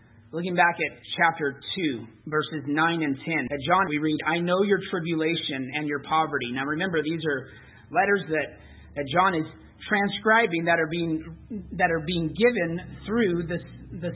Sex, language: male, English